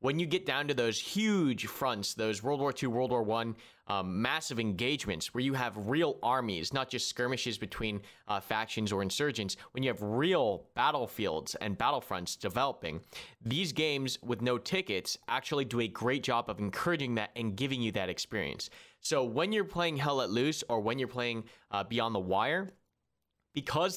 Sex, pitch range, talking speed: male, 115-160 Hz, 180 wpm